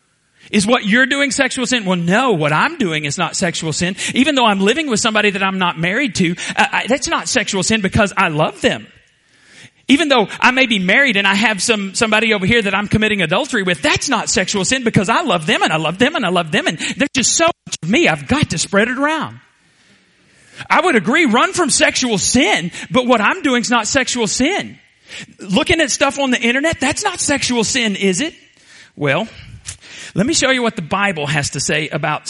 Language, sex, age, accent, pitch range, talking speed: English, male, 40-59, American, 175-230 Hz, 225 wpm